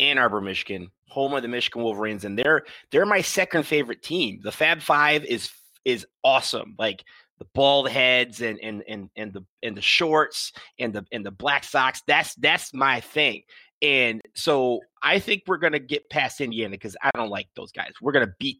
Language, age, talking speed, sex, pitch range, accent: English, 30-49, 195 wpm, male, 115-165 Hz, American